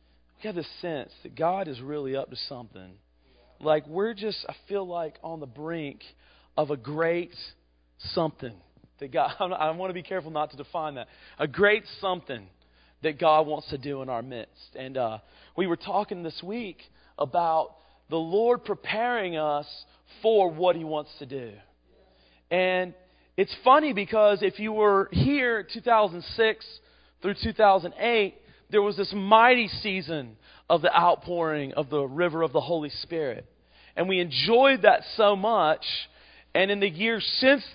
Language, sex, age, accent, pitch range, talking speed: English, male, 40-59, American, 145-210 Hz, 160 wpm